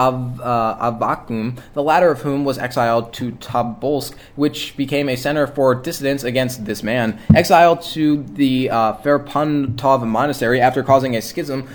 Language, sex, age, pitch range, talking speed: English, male, 20-39, 125-155 Hz, 150 wpm